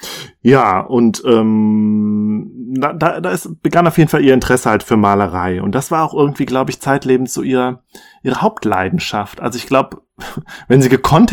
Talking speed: 170 wpm